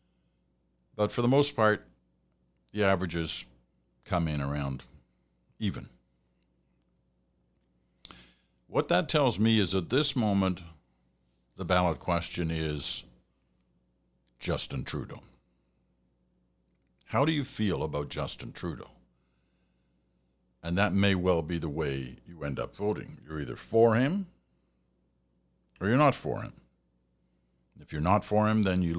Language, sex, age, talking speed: English, male, 60-79, 120 wpm